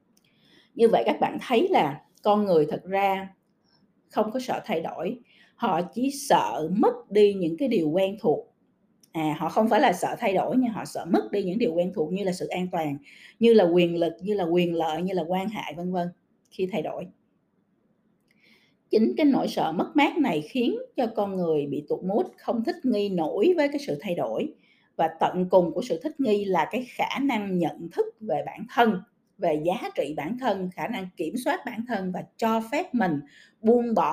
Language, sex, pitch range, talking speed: Vietnamese, female, 180-250 Hz, 210 wpm